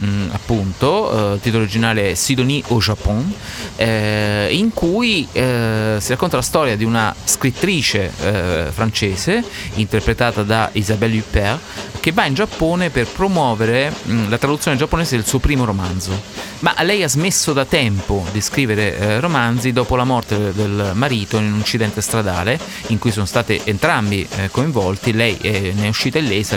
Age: 30-49